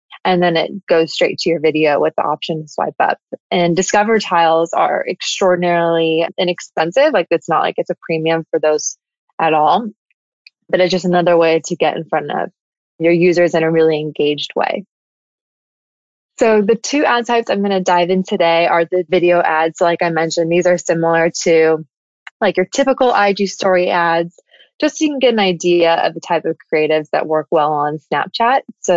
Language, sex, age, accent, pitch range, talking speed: English, female, 20-39, American, 165-190 Hz, 195 wpm